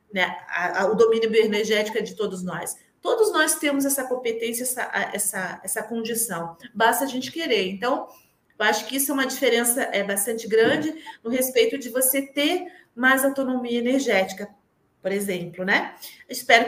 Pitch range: 220-290 Hz